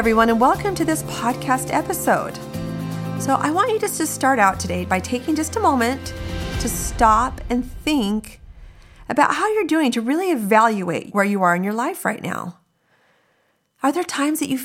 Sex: female